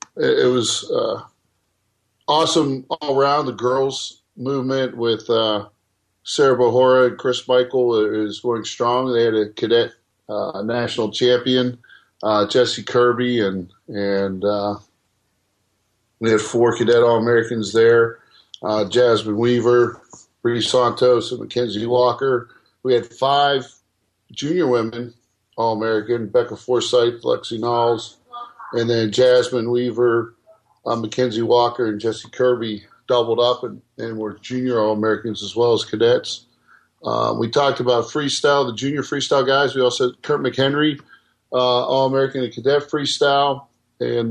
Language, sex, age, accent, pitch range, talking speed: English, male, 50-69, American, 115-125 Hz, 130 wpm